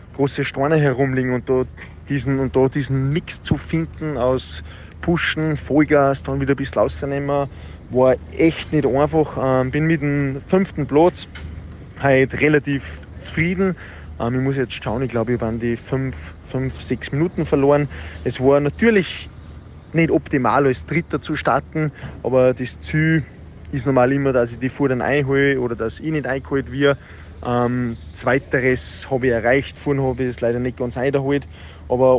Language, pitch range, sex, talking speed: German, 120-140 Hz, male, 155 wpm